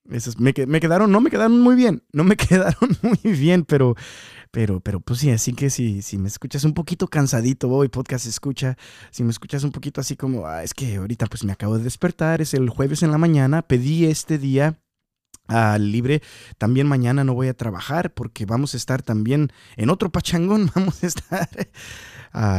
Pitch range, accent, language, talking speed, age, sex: 125-180 Hz, Mexican, Spanish, 205 wpm, 30-49, male